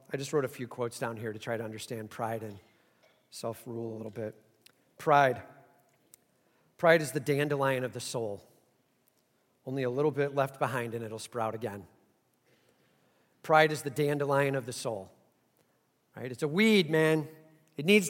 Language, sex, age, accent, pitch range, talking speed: English, male, 40-59, American, 135-170 Hz, 170 wpm